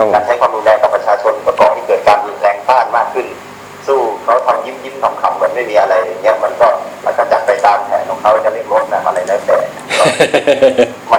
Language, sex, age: Thai, male, 30-49